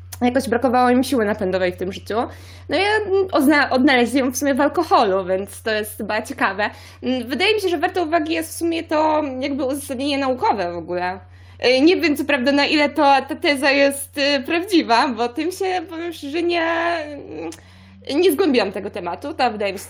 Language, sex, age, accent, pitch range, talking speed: Polish, female, 20-39, native, 195-295 Hz, 180 wpm